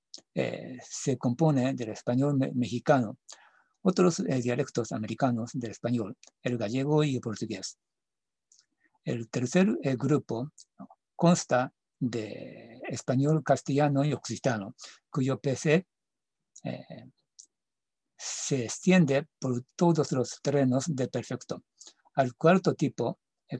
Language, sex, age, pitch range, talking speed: Spanish, male, 60-79, 120-145 Hz, 110 wpm